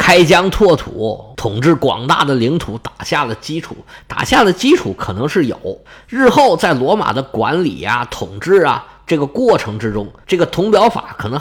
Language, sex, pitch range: Chinese, male, 125-195 Hz